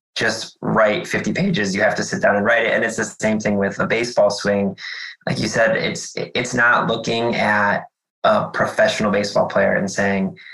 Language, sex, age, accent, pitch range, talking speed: English, male, 20-39, American, 105-115 Hz, 200 wpm